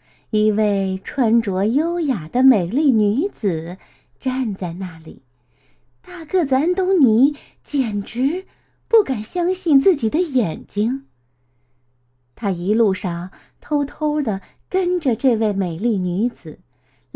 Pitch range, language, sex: 195-300 Hz, Chinese, female